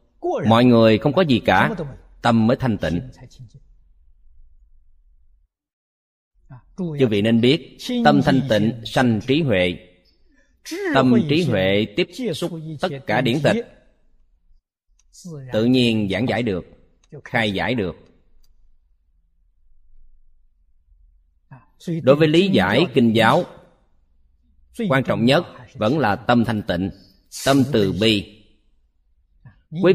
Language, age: Vietnamese, 20-39